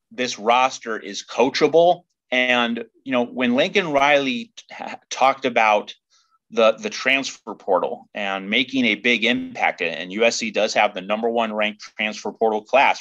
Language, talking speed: English, 150 wpm